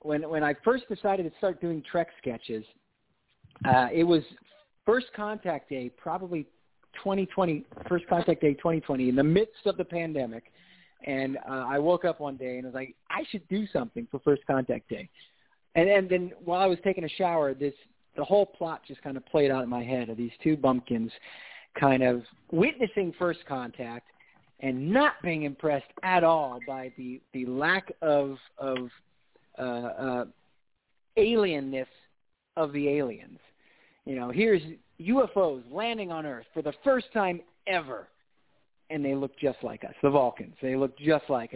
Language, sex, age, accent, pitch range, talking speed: English, male, 40-59, American, 130-175 Hz, 175 wpm